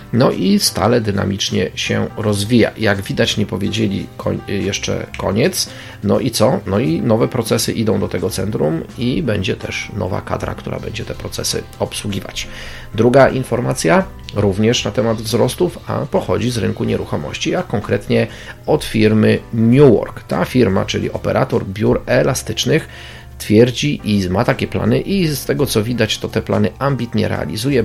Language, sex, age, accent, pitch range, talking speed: Polish, male, 40-59, native, 100-120 Hz, 155 wpm